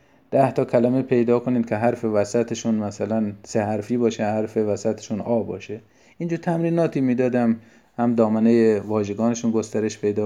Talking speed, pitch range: 145 wpm, 110-140 Hz